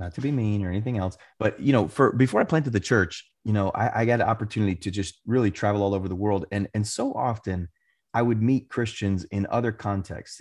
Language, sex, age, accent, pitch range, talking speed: English, male, 30-49, American, 100-125 Hz, 240 wpm